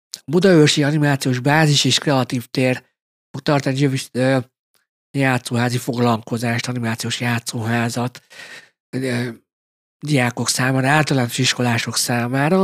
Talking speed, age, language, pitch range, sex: 80 wpm, 60-79, Hungarian, 120-145 Hz, male